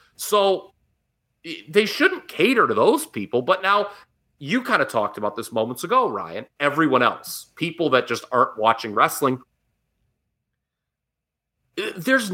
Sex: male